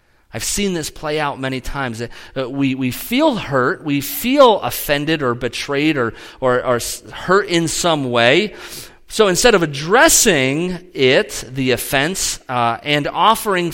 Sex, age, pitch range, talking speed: male, 40-59, 120-180 Hz, 145 wpm